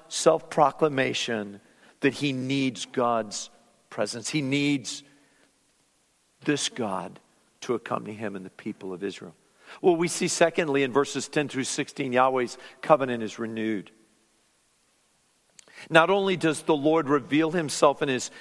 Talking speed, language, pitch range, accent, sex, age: 130 wpm, English, 140-180 Hz, American, male, 50-69